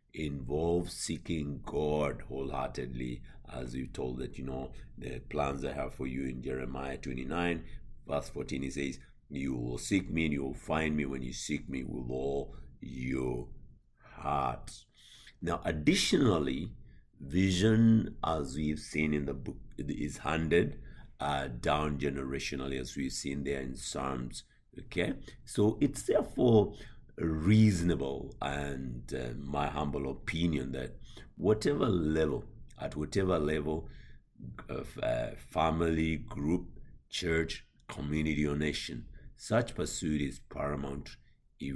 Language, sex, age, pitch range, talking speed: English, male, 60-79, 65-80 Hz, 130 wpm